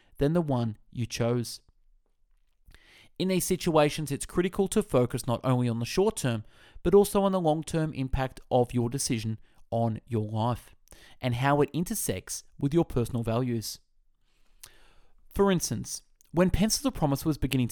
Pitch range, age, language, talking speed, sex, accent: 120-180 Hz, 20-39, English, 150 wpm, male, Australian